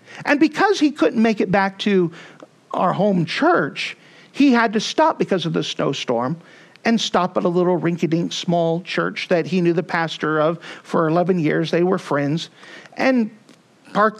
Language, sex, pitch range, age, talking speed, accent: English, male, 175-210 Hz, 50-69, 175 wpm, American